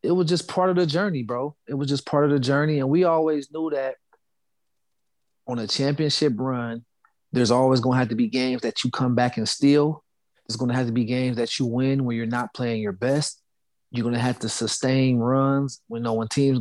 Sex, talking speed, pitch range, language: male, 235 wpm, 125-150 Hz, English